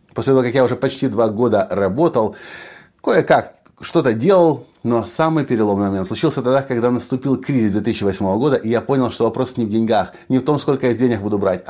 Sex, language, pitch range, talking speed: male, Russian, 105-130 Hz, 205 wpm